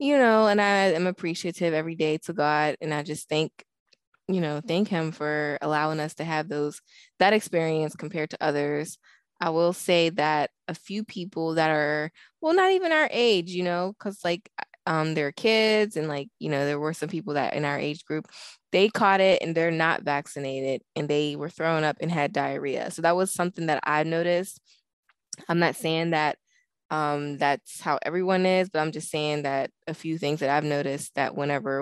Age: 20-39